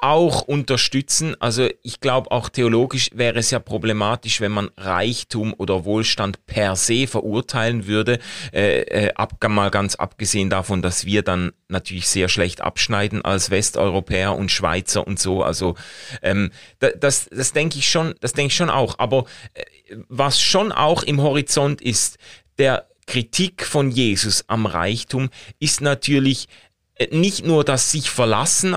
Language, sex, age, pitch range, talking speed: German, male, 30-49, 105-140 Hz, 140 wpm